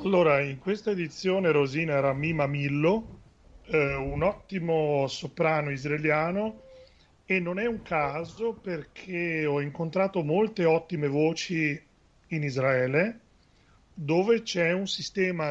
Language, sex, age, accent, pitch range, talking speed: Italian, male, 40-59, native, 145-180 Hz, 115 wpm